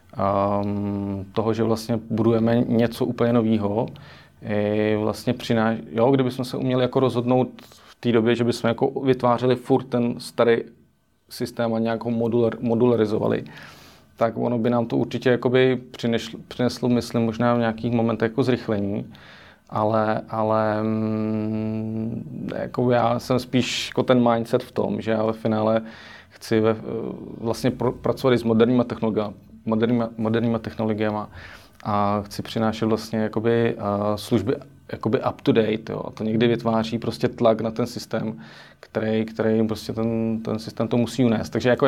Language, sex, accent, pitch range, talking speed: Czech, male, native, 110-120 Hz, 140 wpm